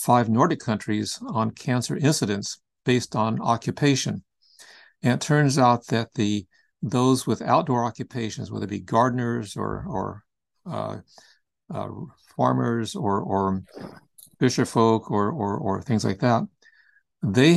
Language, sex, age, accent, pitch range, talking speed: English, male, 60-79, American, 105-125 Hz, 135 wpm